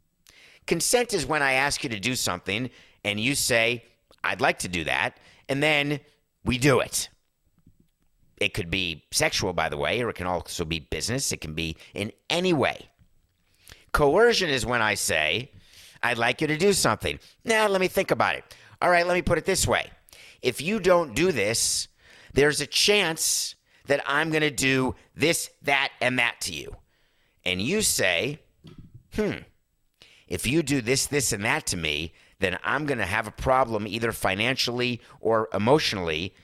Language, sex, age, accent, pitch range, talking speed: English, male, 50-69, American, 95-140 Hz, 180 wpm